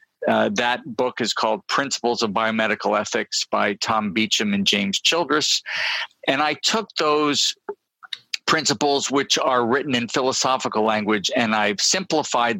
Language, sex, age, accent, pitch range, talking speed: English, male, 50-69, American, 115-160 Hz, 140 wpm